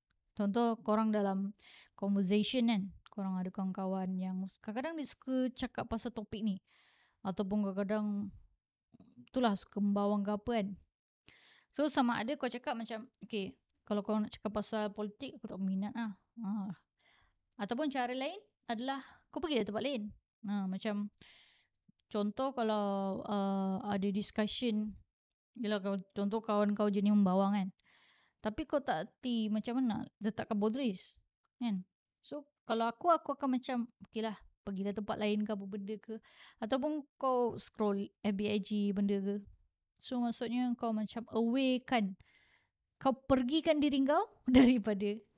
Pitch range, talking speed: 205-245 Hz, 140 wpm